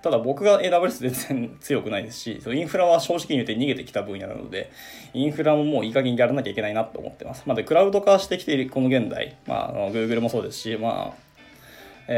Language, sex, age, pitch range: Japanese, male, 20-39, 120-160 Hz